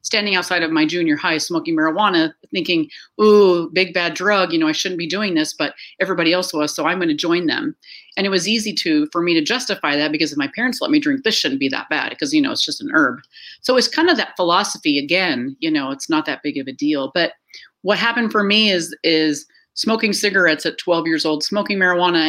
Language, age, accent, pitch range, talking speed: English, 40-59, American, 165-245 Hz, 240 wpm